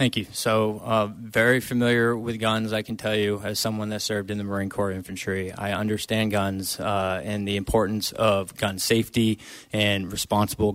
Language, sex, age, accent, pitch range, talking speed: English, male, 20-39, American, 95-110 Hz, 185 wpm